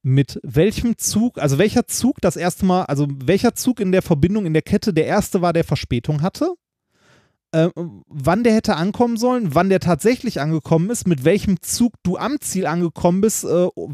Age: 30-49